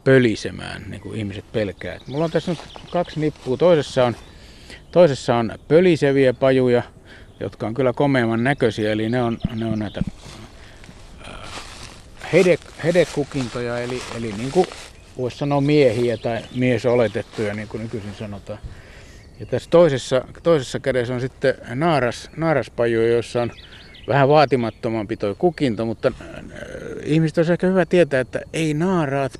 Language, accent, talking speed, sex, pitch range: Finnish, native, 130 wpm, male, 110-145 Hz